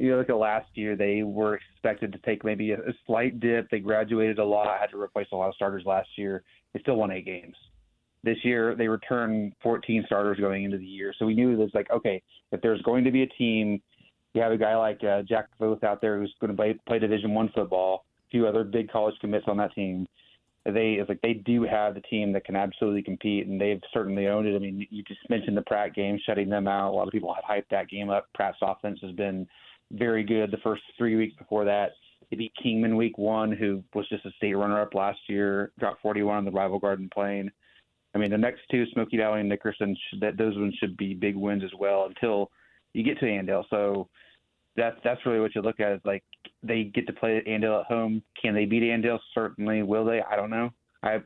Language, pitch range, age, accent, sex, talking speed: English, 100-115 Hz, 30-49, American, male, 240 wpm